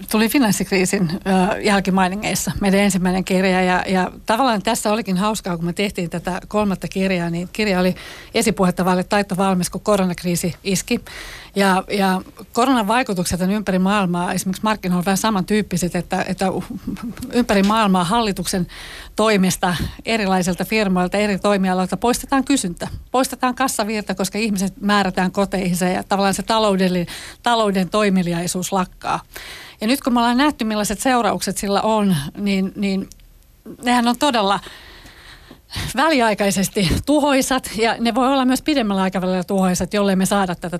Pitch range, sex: 185-215 Hz, female